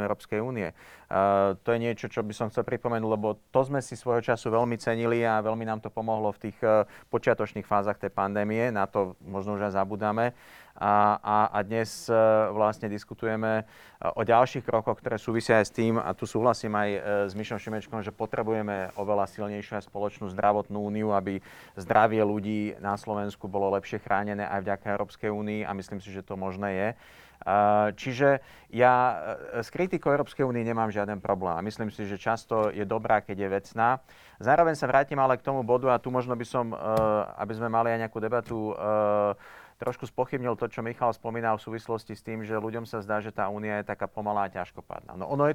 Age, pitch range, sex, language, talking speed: 30-49, 105-120 Hz, male, Slovak, 200 wpm